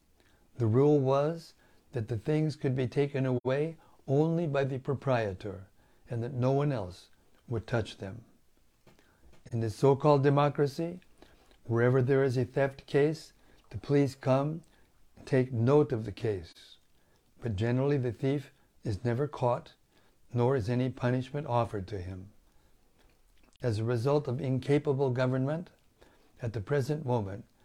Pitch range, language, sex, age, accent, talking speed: 110-140 Hz, English, male, 60-79, American, 140 wpm